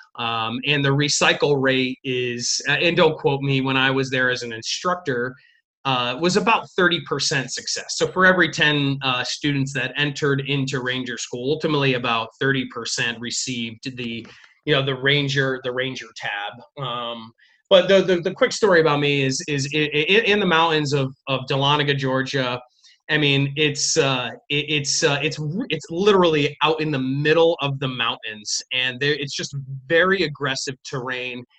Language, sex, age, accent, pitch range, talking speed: English, male, 30-49, American, 130-155 Hz, 175 wpm